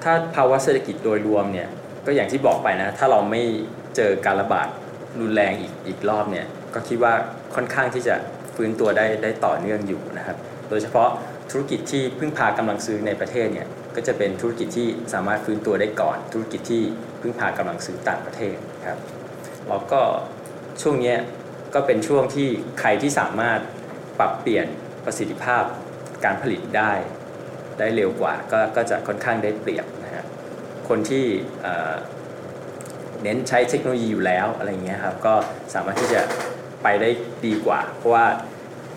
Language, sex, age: Thai, male, 20-39